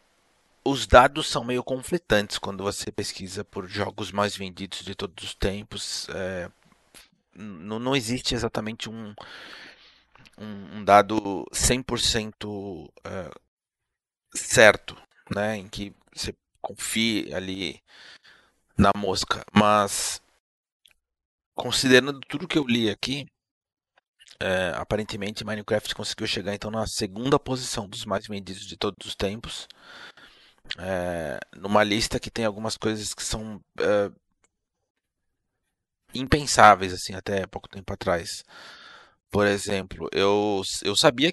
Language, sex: Portuguese, male